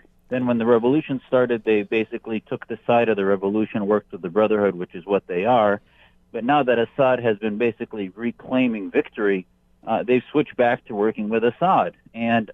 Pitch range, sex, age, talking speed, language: 110-140 Hz, male, 50-69, 190 wpm, English